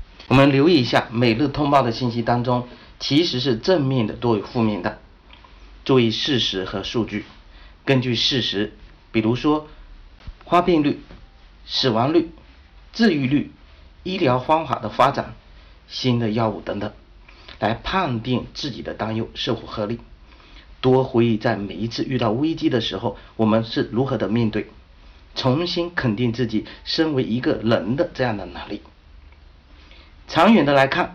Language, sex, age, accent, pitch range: Chinese, male, 50-69, native, 105-135 Hz